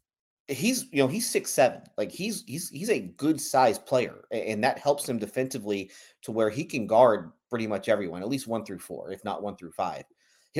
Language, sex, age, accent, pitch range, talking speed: English, male, 30-49, American, 105-145 Hz, 215 wpm